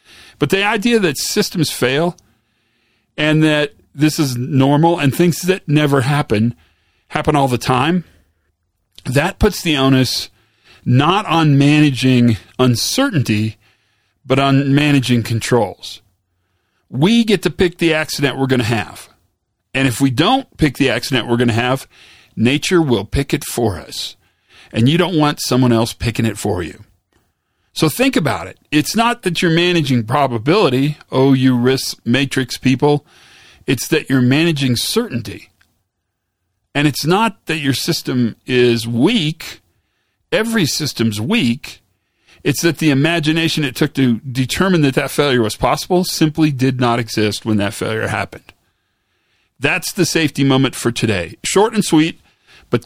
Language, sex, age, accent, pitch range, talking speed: English, male, 40-59, American, 115-165 Hz, 150 wpm